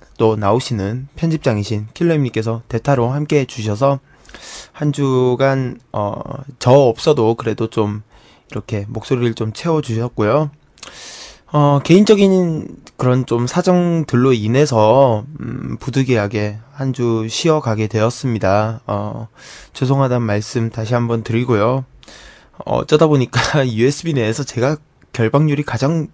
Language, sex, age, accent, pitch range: Korean, male, 20-39, native, 115-150 Hz